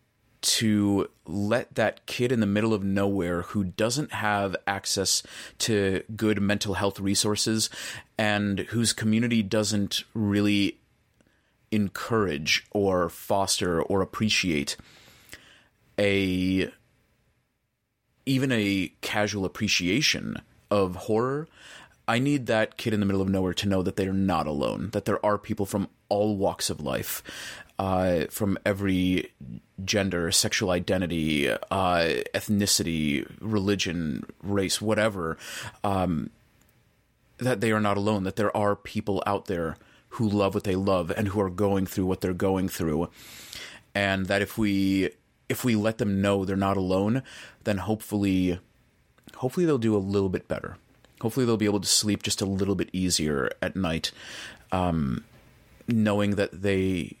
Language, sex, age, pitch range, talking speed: English, male, 30-49, 95-110 Hz, 140 wpm